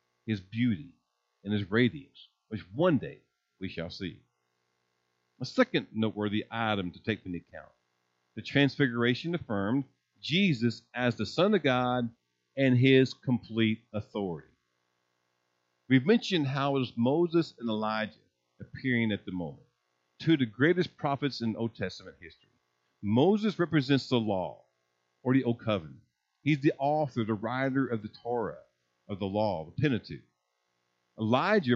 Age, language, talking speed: 50-69, English, 140 wpm